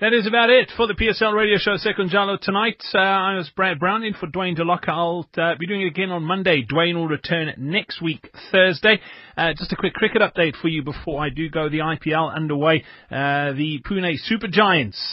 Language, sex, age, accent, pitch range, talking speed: English, male, 30-49, British, 145-190 Hz, 220 wpm